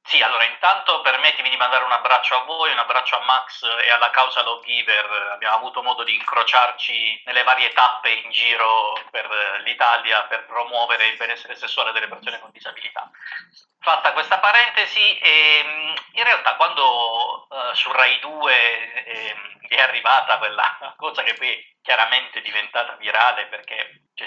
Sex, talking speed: male, 155 wpm